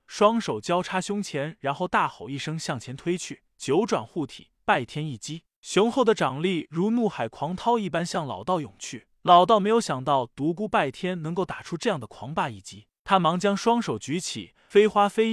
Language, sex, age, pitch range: Chinese, male, 20-39, 145-200 Hz